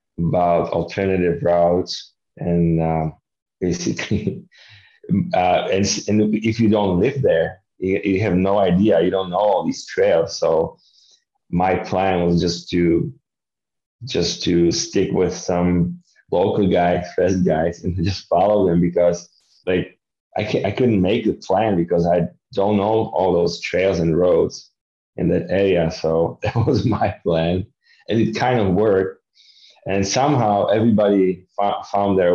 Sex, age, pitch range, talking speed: male, 30-49, 85-105 Hz, 150 wpm